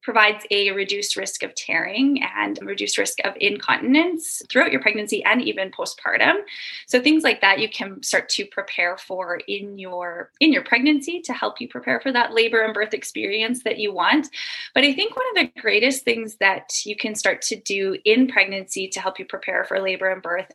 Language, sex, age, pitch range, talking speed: English, female, 20-39, 195-260 Hz, 200 wpm